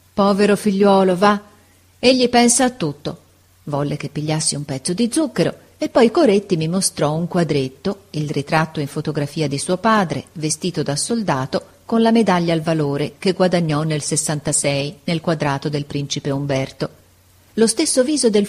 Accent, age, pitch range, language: native, 40-59, 150-205 Hz, Italian